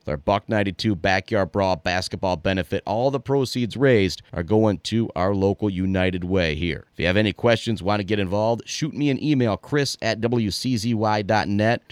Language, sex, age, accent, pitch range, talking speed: English, male, 30-49, American, 100-130 Hz, 175 wpm